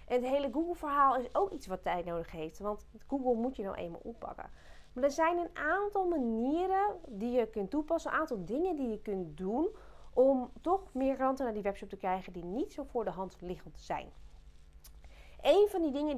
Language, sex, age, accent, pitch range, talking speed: Dutch, female, 30-49, Dutch, 195-280 Hz, 205 wpm